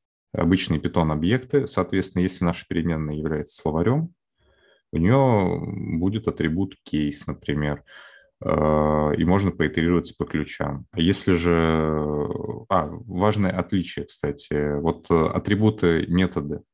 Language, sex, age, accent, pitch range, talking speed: Russian, male, 20-39, native, 80-95 Hz, 110 wpm